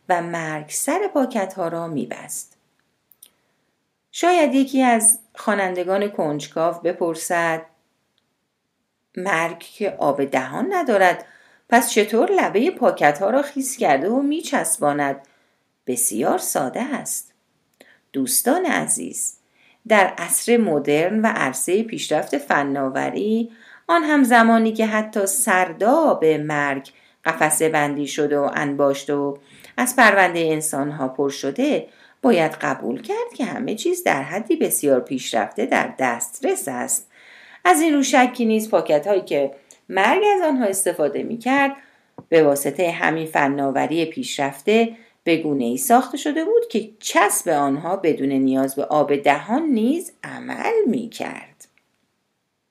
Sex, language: female, Persian